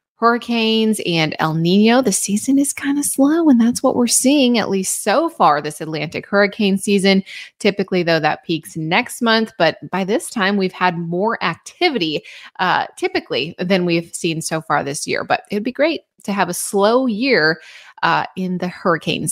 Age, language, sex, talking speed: 20-39, English, female, 185 wpm